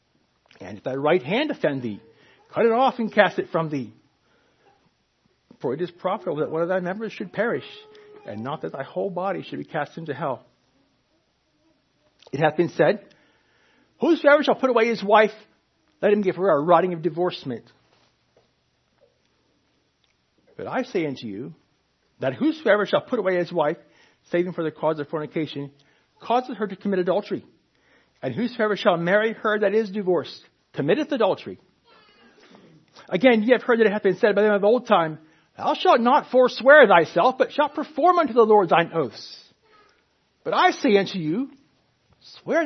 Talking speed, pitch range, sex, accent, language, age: 170 wpm, 175-285 Hz, male, American, English, 60-79